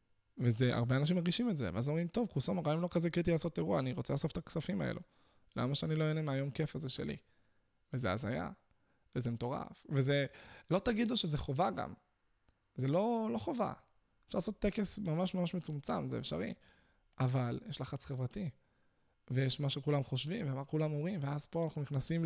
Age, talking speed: 20-39, 180 wpm